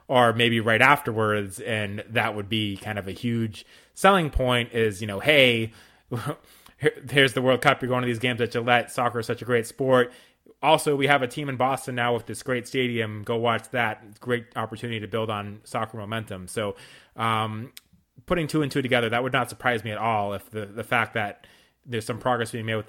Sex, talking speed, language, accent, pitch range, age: male, 220 wpm, English, American, 105-125 Hz, 30-49